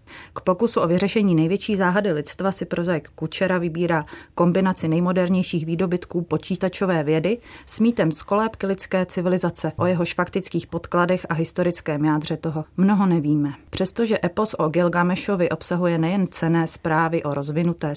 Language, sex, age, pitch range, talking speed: Czech, female, 30-49, 160-185 Hz, 140 wpm